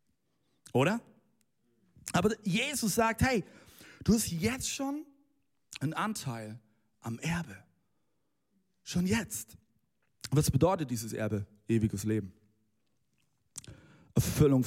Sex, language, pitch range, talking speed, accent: male, German, 110-155 Hz, 90 wpm, German